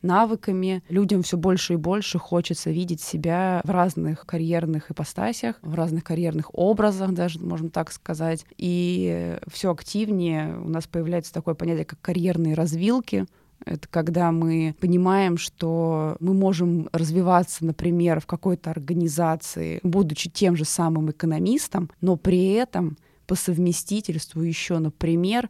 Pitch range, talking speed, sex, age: 165-185 Hz, 130 wpm, female, 20-39